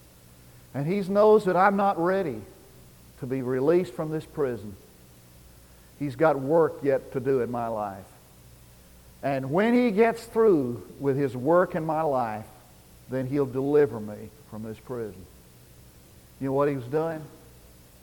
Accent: American